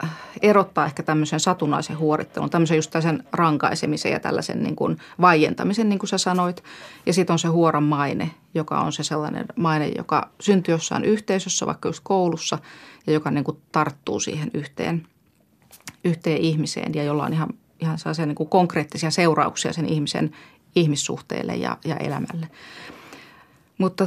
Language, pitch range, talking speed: Finnish, 150-175 Hz, 145 wpm